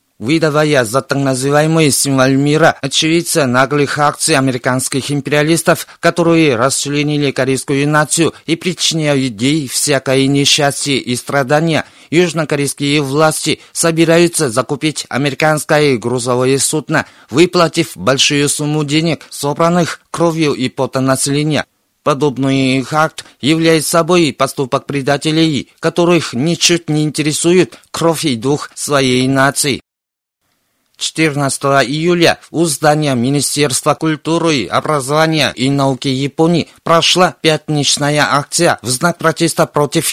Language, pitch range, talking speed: Russian, 135-160 Hz, 105 wpm